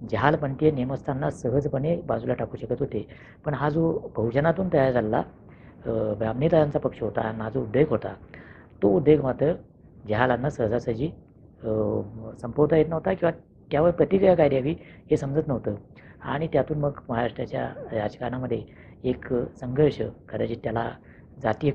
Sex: female